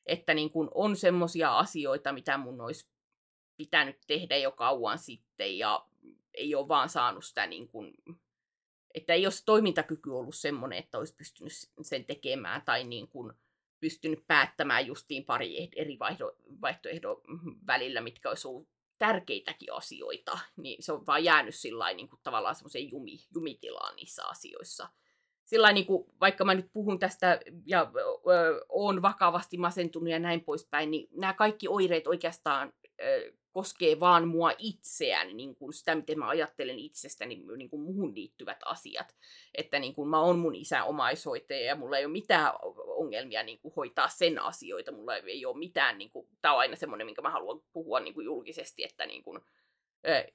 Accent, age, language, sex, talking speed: native, 30-49, Finnish, female, 160 wpm